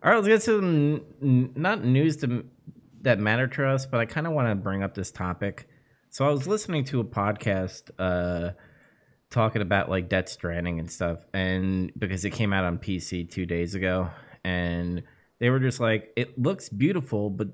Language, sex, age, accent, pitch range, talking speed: English, male, 20-39, American, 95-125 Hz, 190 wpm